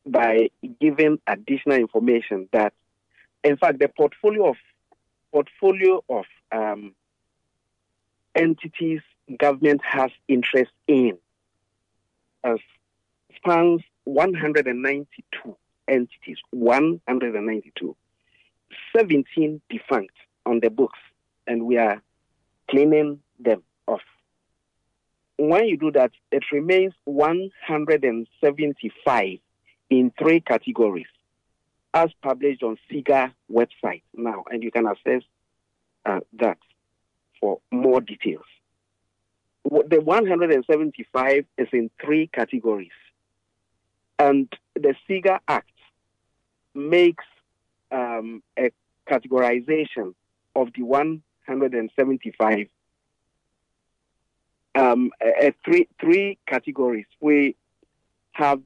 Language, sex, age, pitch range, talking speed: English, male, 50-69, 110-155 Hz, 85 wpm